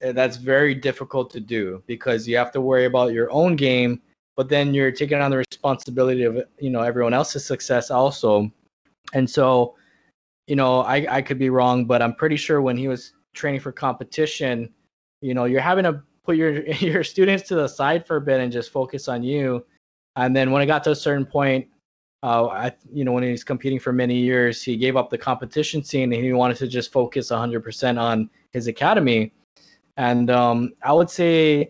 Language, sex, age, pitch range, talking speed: English, male, 20-39, 120-145 Hz, 205 wpm